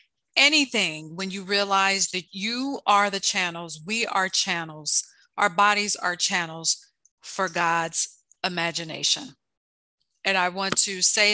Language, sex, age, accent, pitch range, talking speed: English, female, 40-59, American, 180-210 Hz, 125 wpm